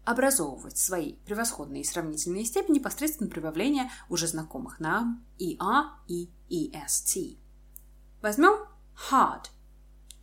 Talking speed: 105 wpm